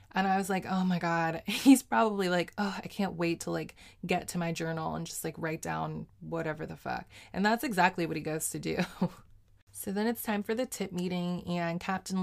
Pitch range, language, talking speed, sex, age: 165-195 Hz, English, 225 wpm, female, 20-39